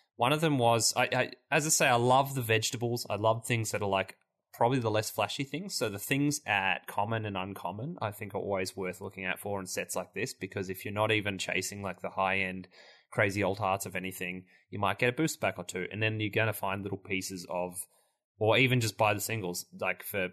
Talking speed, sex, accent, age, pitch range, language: 235 wpm, male, Australian, 20-39, 95-120 Hz, English